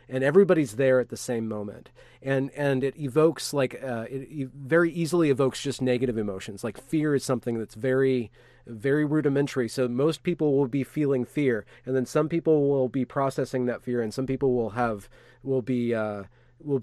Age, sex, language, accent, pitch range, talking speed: 30-49, male, English, American, 120-140 Hz, 195 wpm